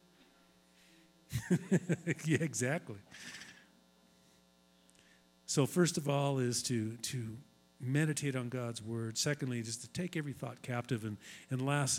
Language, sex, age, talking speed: English, male, 50-69, 115 wpm